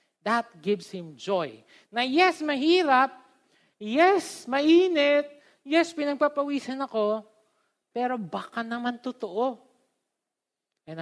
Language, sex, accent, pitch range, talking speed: Filipino, male, native, 155-205 Hz, 95 wpm